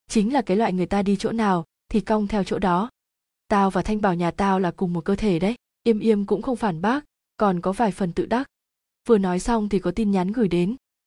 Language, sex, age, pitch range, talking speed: Vietnamese, female, 20-39, 185-225 Hz, 255 wpm